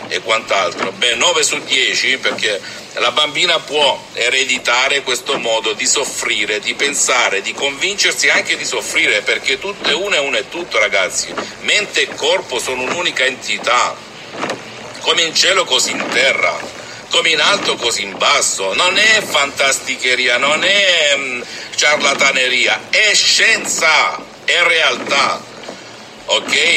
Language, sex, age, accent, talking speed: Italian, male, 50-69, native, 135 wpm